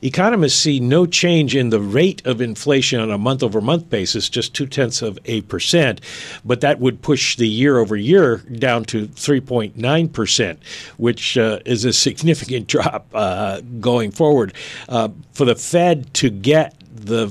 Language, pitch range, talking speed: English, 105-135 Hz, 155 wpm